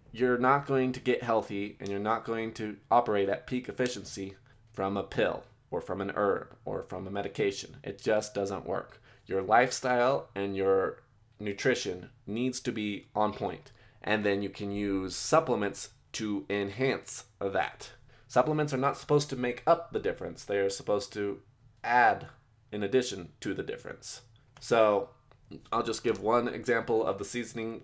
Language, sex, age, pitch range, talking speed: English, male, 20-39, 100-125 Hz, 165 wpm